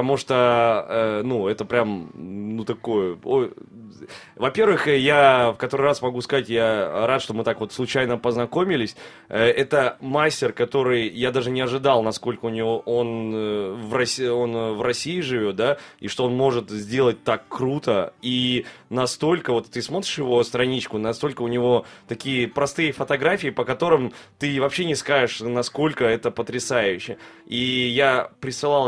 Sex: male